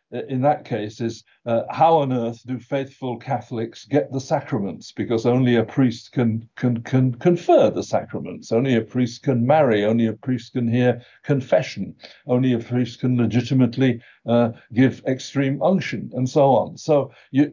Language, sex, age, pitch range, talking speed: English, male, 60-79, 120-145 Hz, 170 wpm